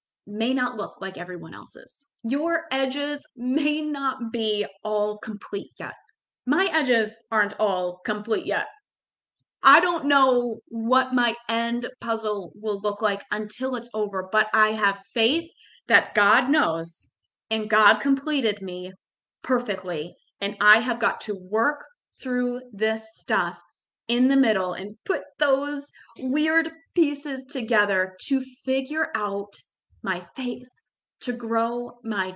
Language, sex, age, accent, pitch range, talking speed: English, female, 20-39, American, 210-275 Hz, 130 wpm